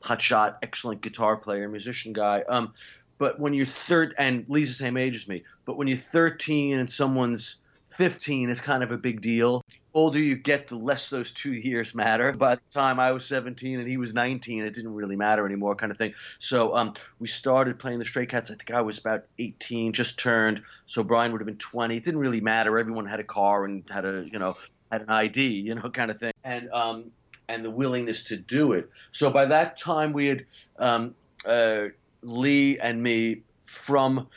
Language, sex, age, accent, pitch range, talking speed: English, male, 30-49, American, 115-140 Hz, 215 wpm